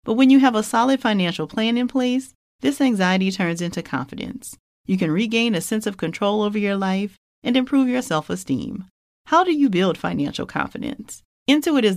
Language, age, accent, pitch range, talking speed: English, 40-59, American, 160-235 Hz, 185 wpm